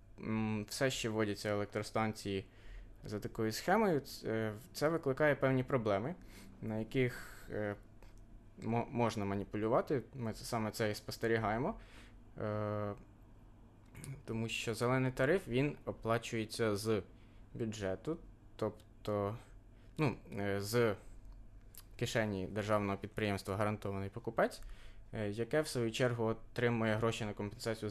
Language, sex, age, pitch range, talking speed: Ukrainian, male, 20-39, 105-115 Hz, 90 wpm